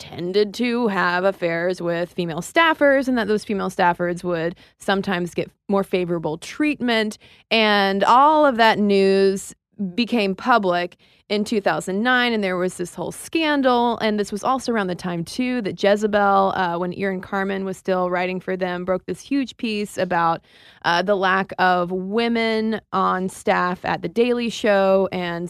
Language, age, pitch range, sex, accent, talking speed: English, 20-39, 180-225 Hz, female, American, 160 wpm